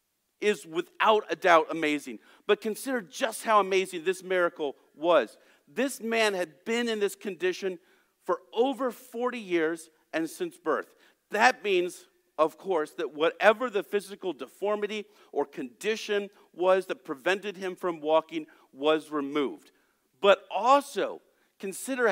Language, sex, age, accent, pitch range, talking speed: English, male, 50-69, American, 160-245 Hz, 135 wpm